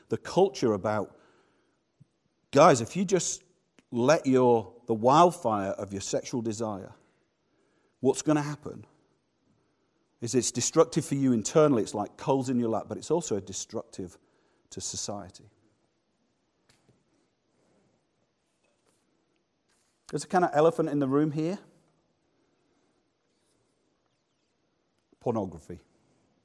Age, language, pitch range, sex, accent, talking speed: 50-69, English, 120-160 Hz, male, British, 105 wpm